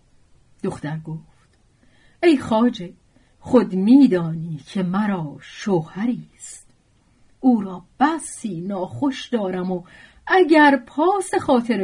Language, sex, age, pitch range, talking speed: Persian, female, 40-59, 155-215 Hz, 95 wpm